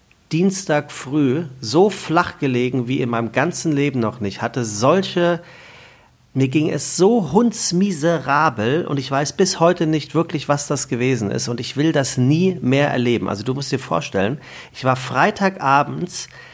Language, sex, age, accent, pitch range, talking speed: German, male, 40-59, German, 115-150 Hz, 165 wpm